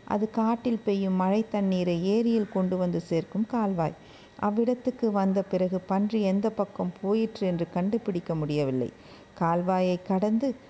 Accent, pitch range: native, 185-225 Hz